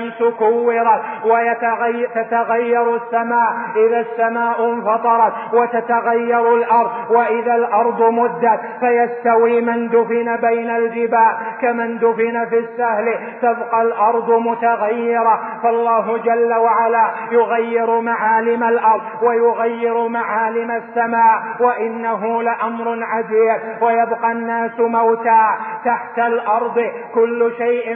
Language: Arabic